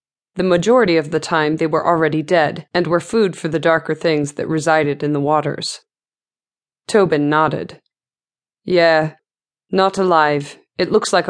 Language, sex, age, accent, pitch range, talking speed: English, female, 20-39, American, 155-185 Hz, 155 wpm